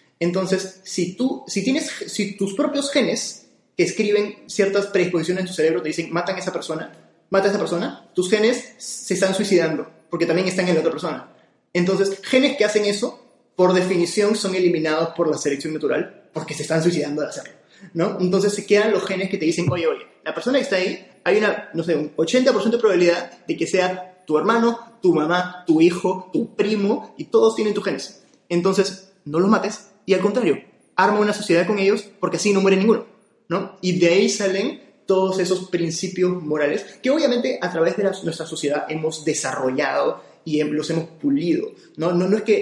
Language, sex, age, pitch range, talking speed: Spanish, male, 20-39, 160-205 Hz, 200 wpm